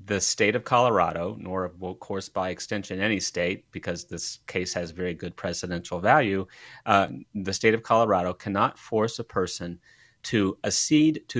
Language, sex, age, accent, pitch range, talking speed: English, male, 30-49, American, 95-115 Hz, 165 wpm